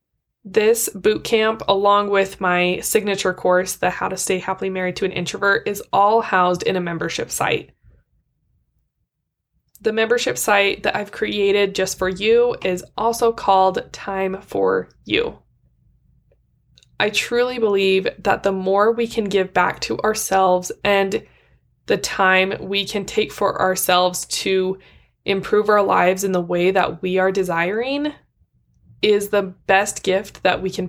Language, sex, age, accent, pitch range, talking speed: English, female, 20-39, American, 185-210 Hz, 150 wpm